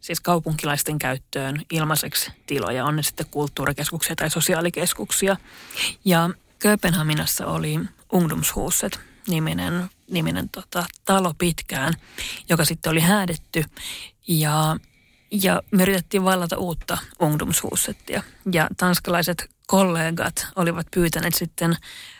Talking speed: 90 wpm